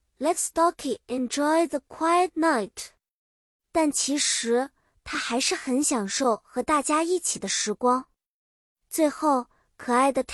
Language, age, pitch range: Chinese, 20-39, 245-325 Hz